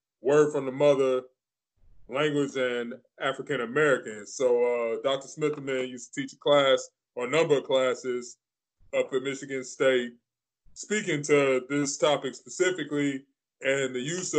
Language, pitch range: English, 125-150 Hz